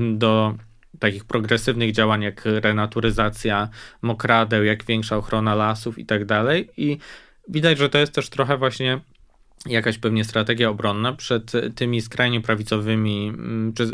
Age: 20-39